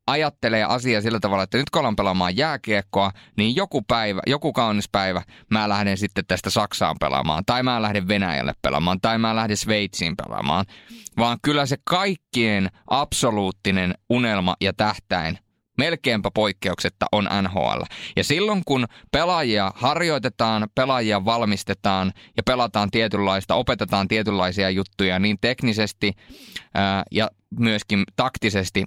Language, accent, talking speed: Finnish, native, 130 wpm